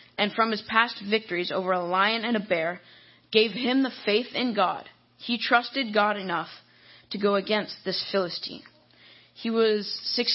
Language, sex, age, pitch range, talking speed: English, female, 20-39, 180-225 Hz, 170 wpm